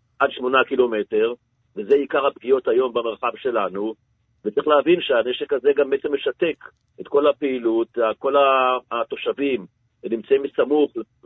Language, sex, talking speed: Hebrew, male, 125 wpm